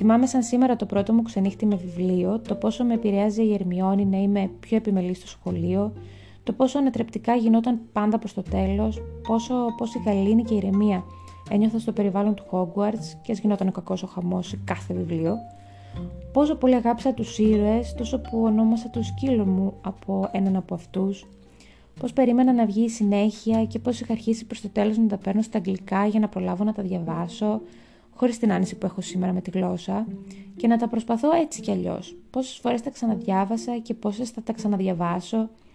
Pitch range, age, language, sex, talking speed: 185-230 Hz, 20-39, Greek, female, 195 wpm